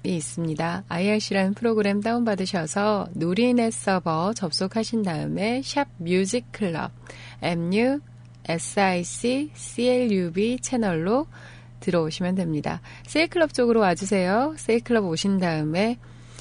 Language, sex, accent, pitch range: Korean, female, native, 165-235 Hz